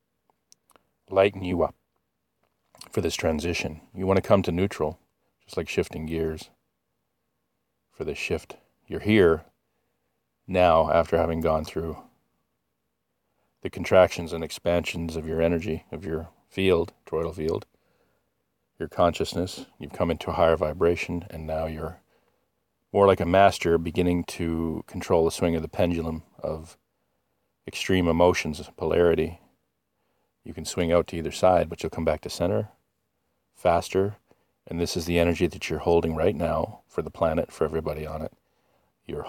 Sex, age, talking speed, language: male, 40-59, 150 wpm, English